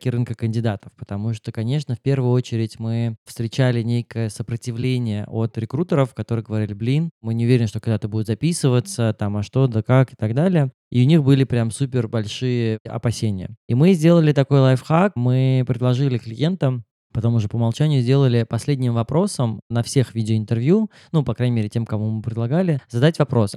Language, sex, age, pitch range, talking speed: Russian, male, 20-39, 115-135 Hz, 175 wpm